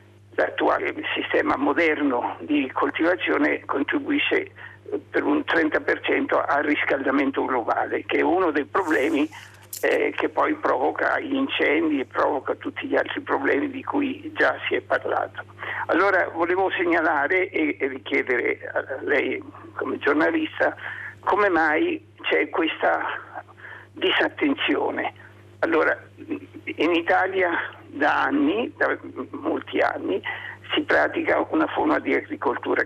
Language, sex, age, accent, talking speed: Italian, male, 50-69, native, 115 wpm